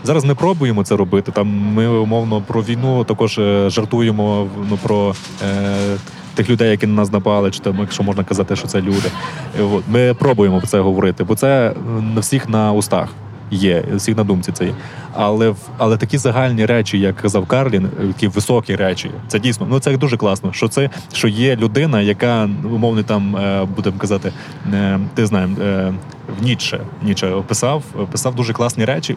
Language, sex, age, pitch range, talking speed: Ukrainian, male, 20-39, 100-125 Hz, 170 wpm